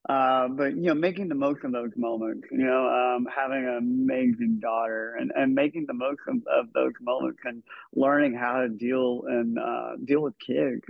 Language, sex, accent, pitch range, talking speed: English, male, American, 115-140 Hz, 195 wpm